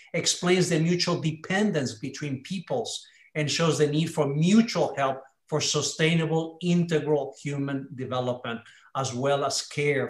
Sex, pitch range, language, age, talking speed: male, 135-165 Hz, Polish, 50-69, 130 wpm